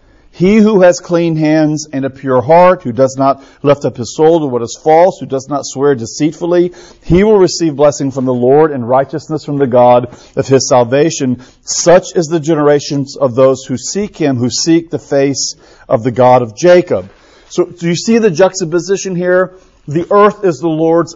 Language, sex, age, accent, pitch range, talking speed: English, male, 40-59, American, 135-170 Hz, 200 wpm